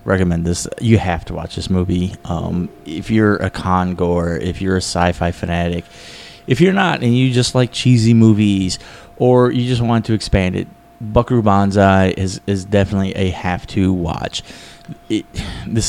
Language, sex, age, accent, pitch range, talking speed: English, male, 20-39, American, 95-115 Hz, 175 wpm